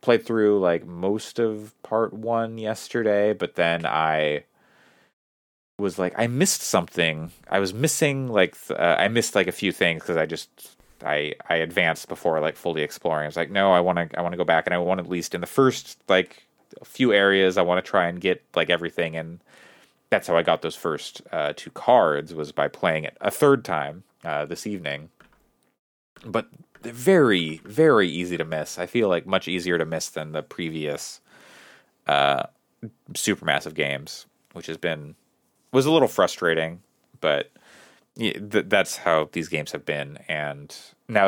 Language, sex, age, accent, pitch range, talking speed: English, male, 30-49, American, 80-105 Hz, 180 wpm